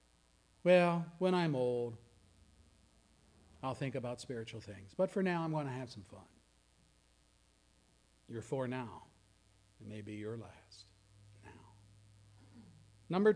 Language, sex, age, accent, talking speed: English, male, 50-69, American, 125 wpm